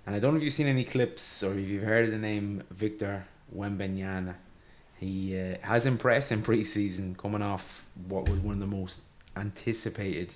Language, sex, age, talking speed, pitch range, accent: English, male, 20-39, 190 wpm, 95-110 Hz, British